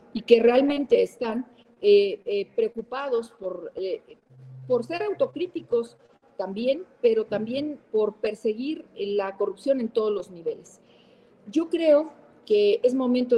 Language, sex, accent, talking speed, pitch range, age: Spanish, female, Mexican, 120 wpm, 205-280 Hz, 40-59